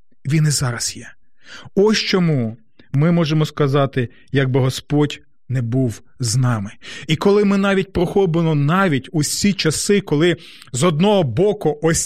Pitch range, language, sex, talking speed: 140-195 Hz, Ukrainian, male, 140 wpm